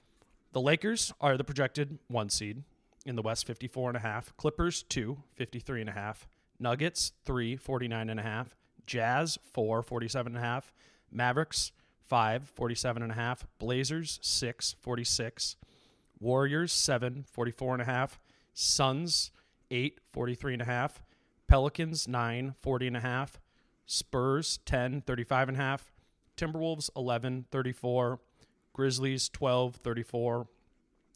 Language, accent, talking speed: English, American, 135 wpm